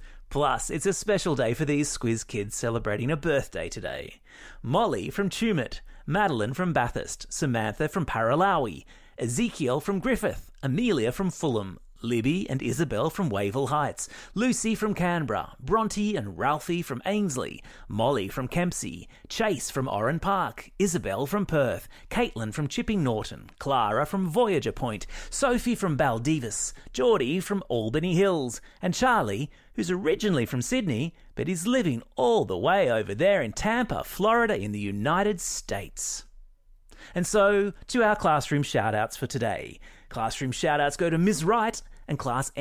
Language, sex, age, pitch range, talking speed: English, male, 30-49, 125-190 Hz, 145 wpm